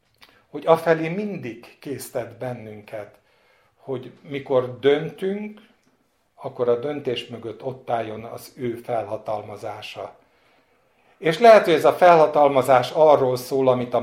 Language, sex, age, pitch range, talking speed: Hungarian, male, 60-79, 120-160 Hz, 115 wpm